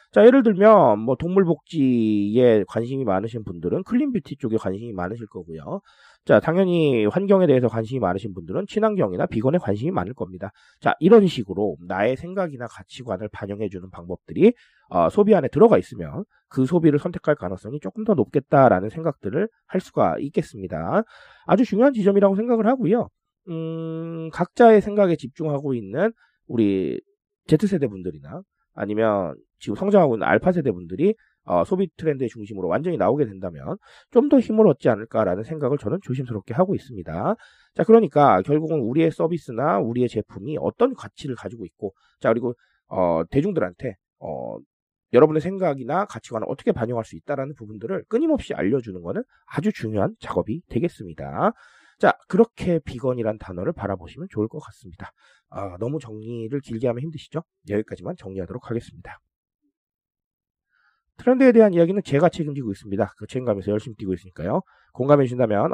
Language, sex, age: Korean, male, 30-49